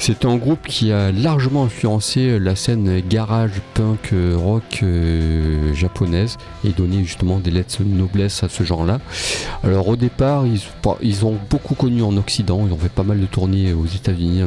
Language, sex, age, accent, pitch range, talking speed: French, male, 40-59, French, 90-115 Hz, 180 wpm